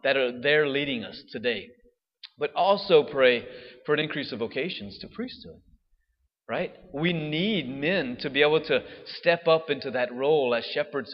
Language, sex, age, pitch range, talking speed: English, male, 30-49, 130-160 Hz, 165 wpm